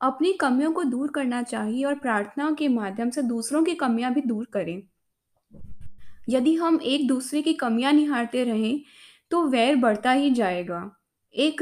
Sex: female